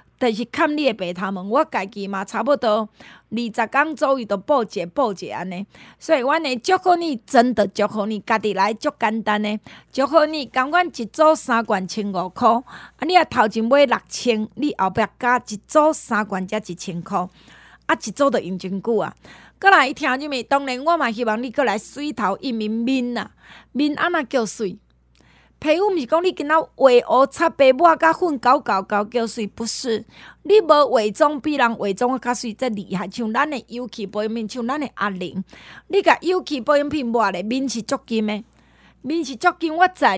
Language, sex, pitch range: Chinese, female, 215-300 Hz